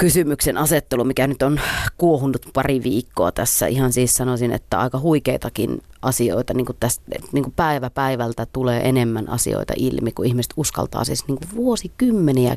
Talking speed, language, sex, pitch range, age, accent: 150 wpm, Finnish, female, 125-155 Hz, 30-49, native